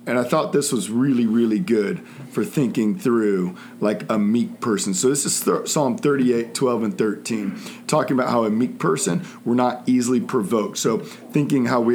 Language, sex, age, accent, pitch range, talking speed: English, male, 40-59, American, 120-150 Hz, 190 wpm